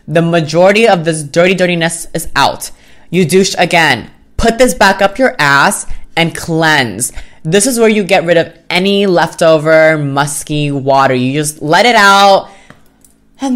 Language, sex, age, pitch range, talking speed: English, female, 20-39, 150-200 Hz, 160 wpm